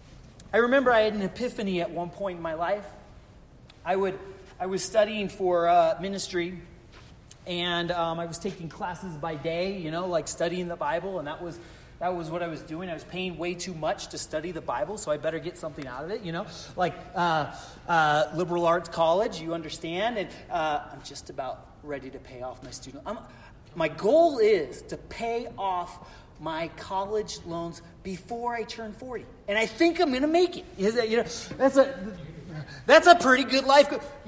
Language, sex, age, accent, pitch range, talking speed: English, male, 30-49, American, 165-240 Hz, 205 wpm